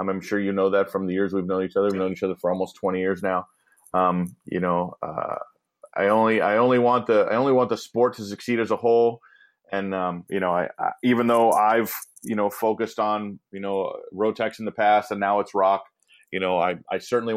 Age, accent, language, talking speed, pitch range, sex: 30-49, American, English, 240 wpm, 95-115 Hz, male